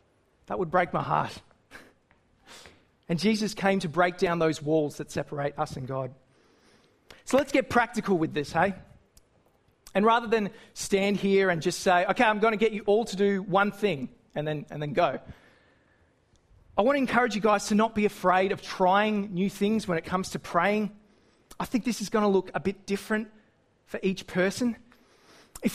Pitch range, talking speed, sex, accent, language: 180-225 Hz, 190 wpm, male, Australian, English